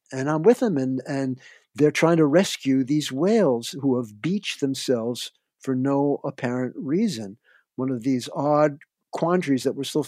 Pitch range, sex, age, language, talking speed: 125-150 Hz, male, 50-69, English, 165 wpm